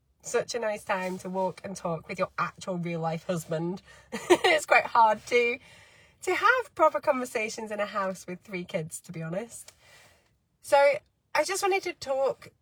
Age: 20-39